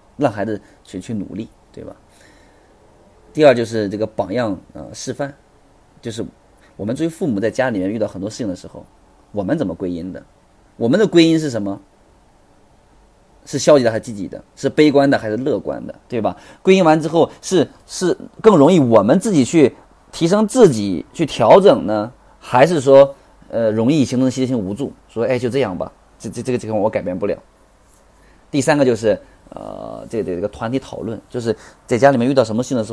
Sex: male